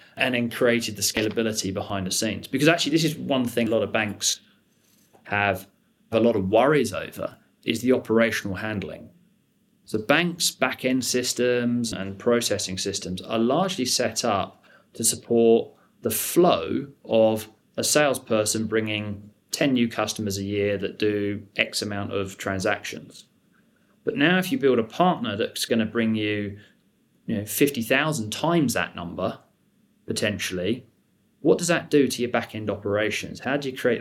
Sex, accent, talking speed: male, British, 155 wpm